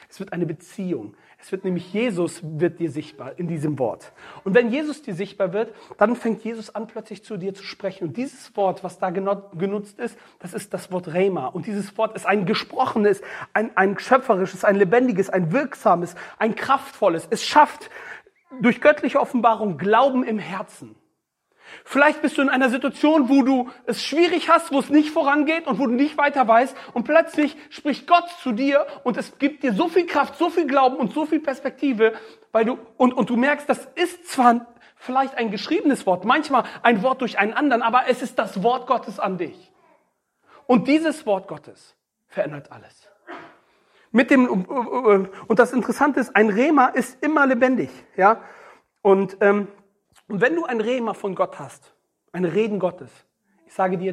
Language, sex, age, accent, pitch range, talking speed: German, male, 40-59, German, 195-265 Hz, 185 wpm